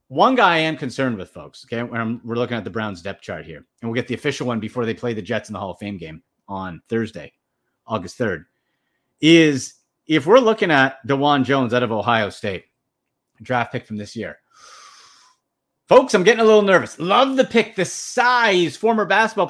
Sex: male